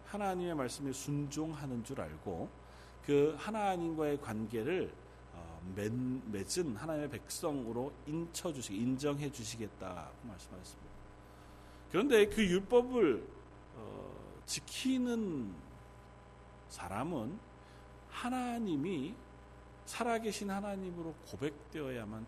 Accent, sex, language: native, male, Korean